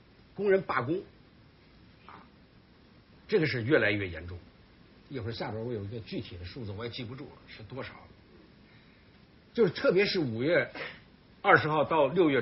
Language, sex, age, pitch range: Chinese, male, 60-79, 105-170 Hz